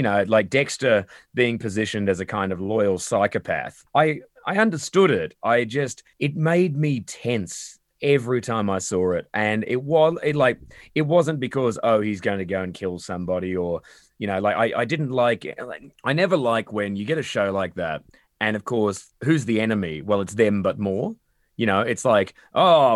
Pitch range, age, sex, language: 100-150 Hz, 20-39, male, English